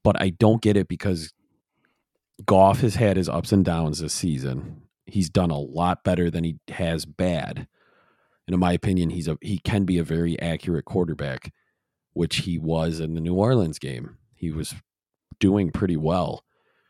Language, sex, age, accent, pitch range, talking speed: English, male, 40-59, American, 85-105 Hz, 180 wpm